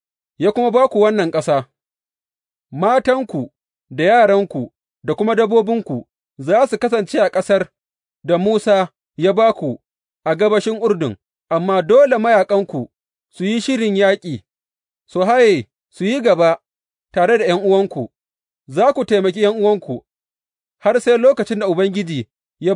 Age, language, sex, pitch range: 30-49, English, male, 155-225 Hz